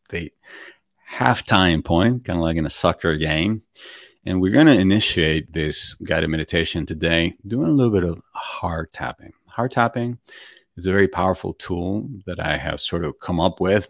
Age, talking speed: 30-49, 175 wpm